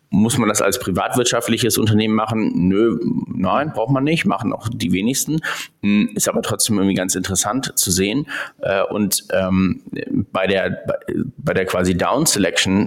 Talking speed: 145 wpm